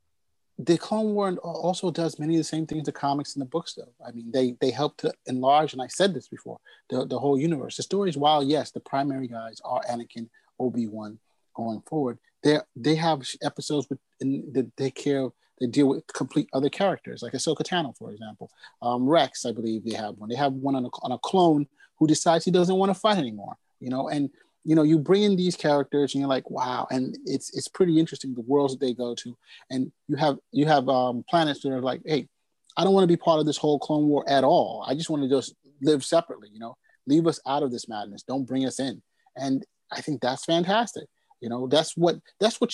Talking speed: 235 wpm